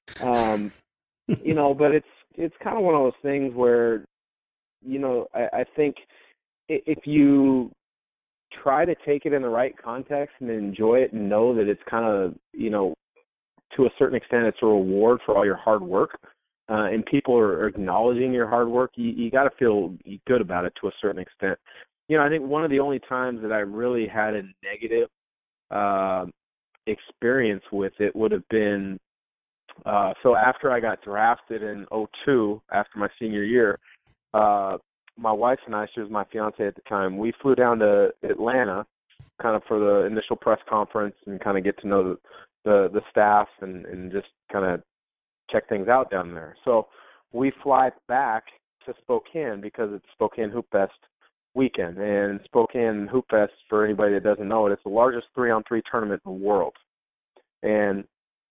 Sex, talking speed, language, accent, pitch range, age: male, 185 wpm, English, American, 105-130 Hz, 30-49